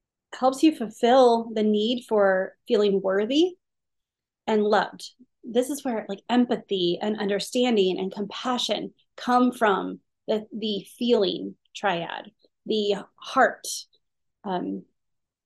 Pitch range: 200-245 Hz